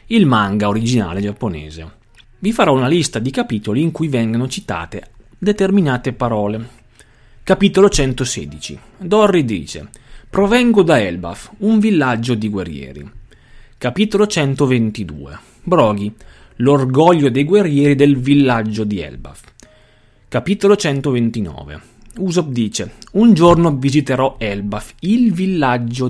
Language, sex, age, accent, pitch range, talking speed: Italian, male, 30-49, native, 110-155 Hz, 110 wpm